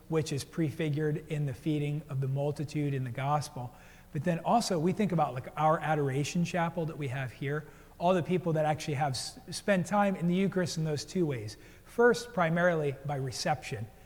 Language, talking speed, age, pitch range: English, 190 wpm, 40-59, 145-185 Hz